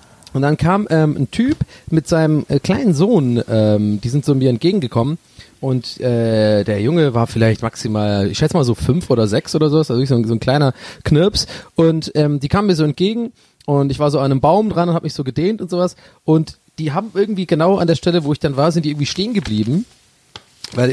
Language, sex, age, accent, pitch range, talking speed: German, male, 30-49, German, 135-205 Hz, 225 wpm